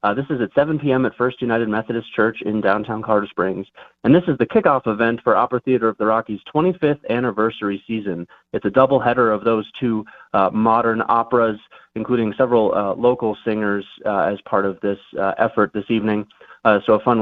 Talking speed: 200 wpm